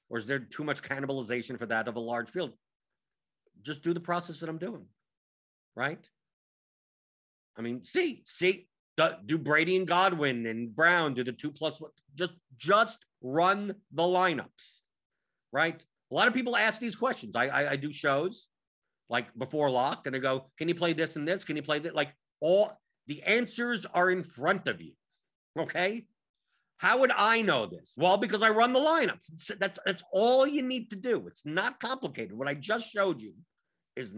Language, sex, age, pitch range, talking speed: English, male, 50-69, 145-195 Hz, 185 wpm